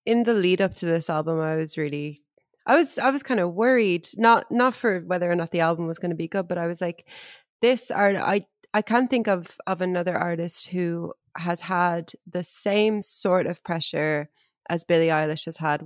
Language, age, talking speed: English, 20-39, 215 wpm